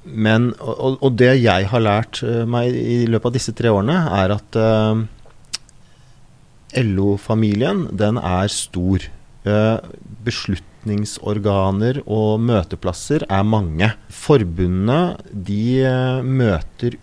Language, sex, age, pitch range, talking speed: English, male, 30-49, 95-115 Hz, 105 wpm